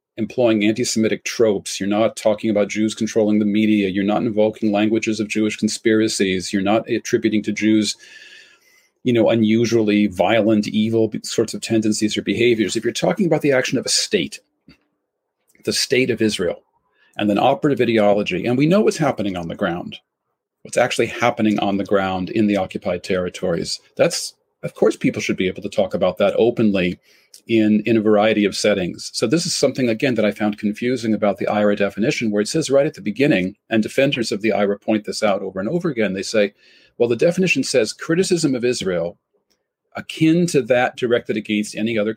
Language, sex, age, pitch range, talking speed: English, male, 40-59, 105-125 Hz, 190 wpm